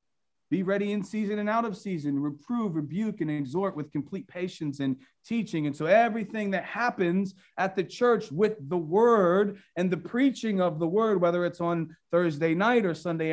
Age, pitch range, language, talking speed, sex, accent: 40-59, 165-215 Hz, English, 185 wpm, male, American